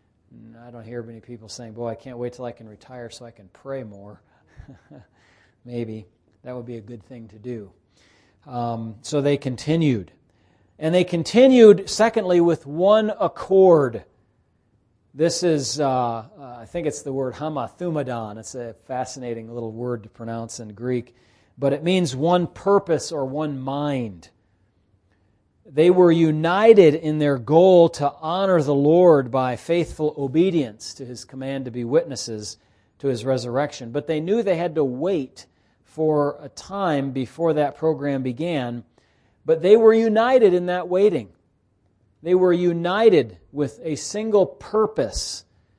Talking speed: 150 wpm